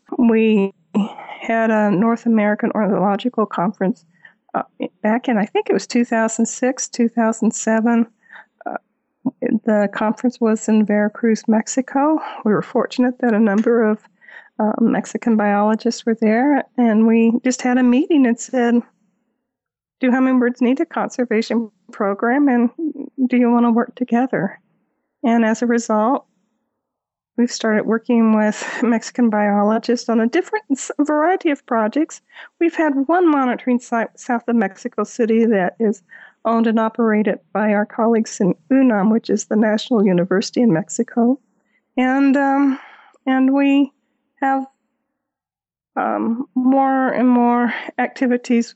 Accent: American